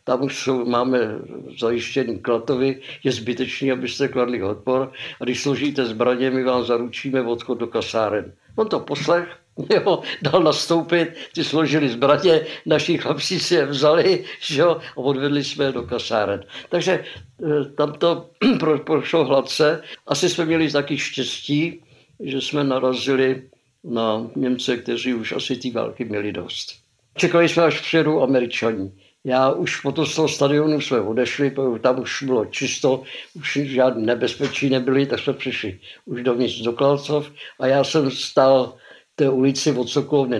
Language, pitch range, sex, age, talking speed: Slovak, 125-150 Hz, male, 60-79, 150 wpm